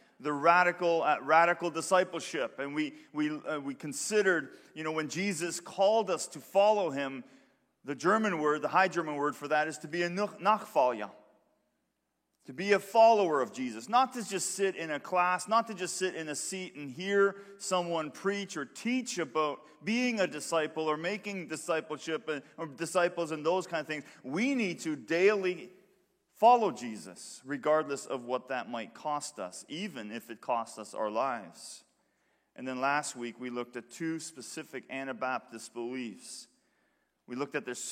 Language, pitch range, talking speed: English, 150-200 Hz, 175 wpm